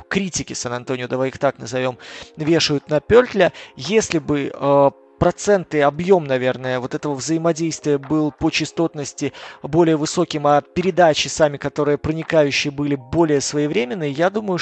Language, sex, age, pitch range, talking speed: Russian, male, 20-39, 145-175 Hz, 135 wpm